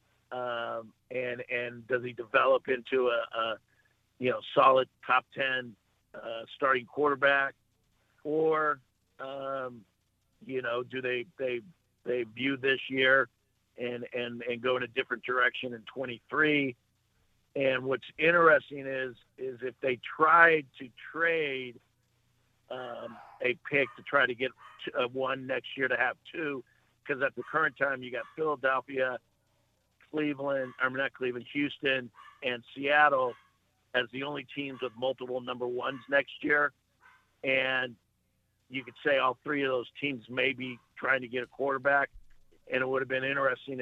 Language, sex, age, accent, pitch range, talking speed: English, male, 50-69, American, 120-135 Hz, 150 wpm